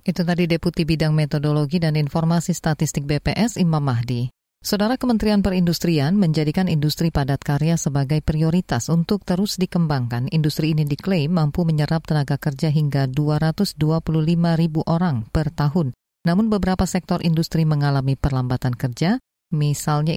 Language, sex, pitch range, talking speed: Indonesian, female, 145-180 Hz, 130 wpm